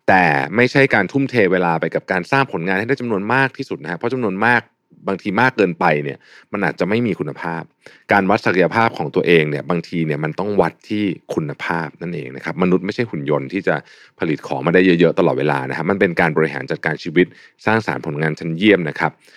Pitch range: 80-110 Hz